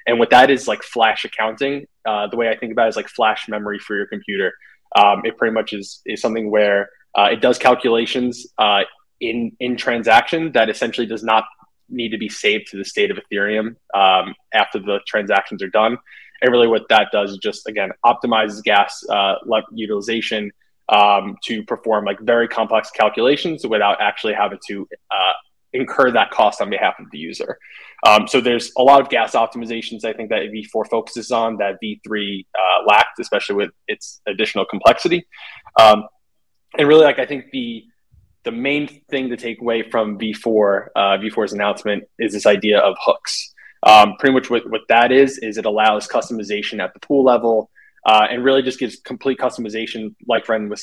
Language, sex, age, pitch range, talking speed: English, male, 20-39, 110-125 Hz, 190 wpm